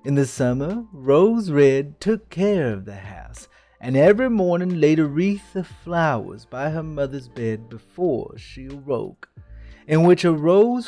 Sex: male